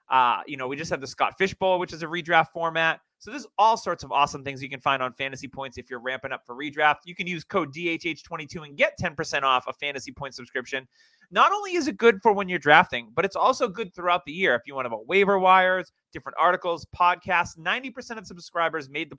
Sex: male